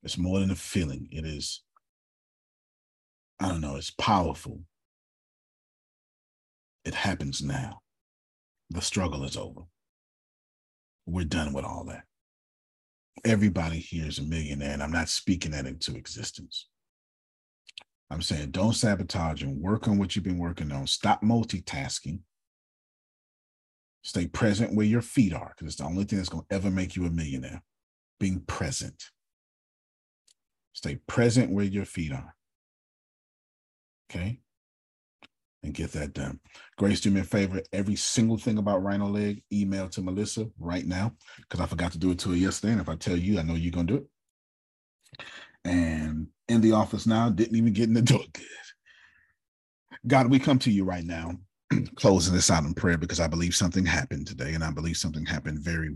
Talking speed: 165 wpm